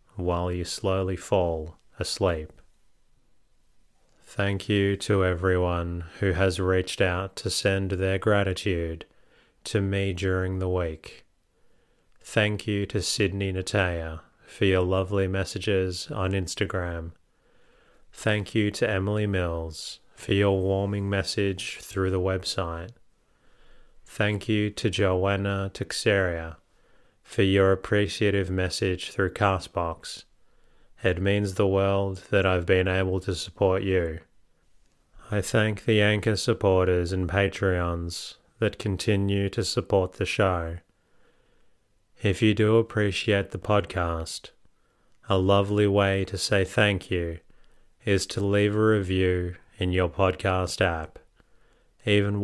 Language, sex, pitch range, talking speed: English, male, 90-100 Hz, 120 wpm